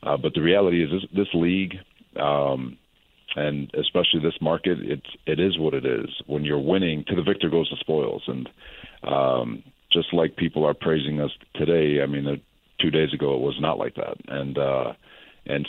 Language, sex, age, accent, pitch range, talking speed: English, male, 40-59, American, 70-80 Hz, 195 wpm